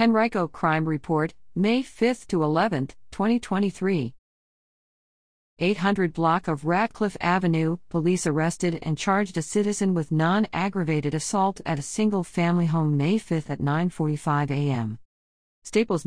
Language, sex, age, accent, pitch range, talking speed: English, female, 40-59, American, 155-200 Hz, 115 wpm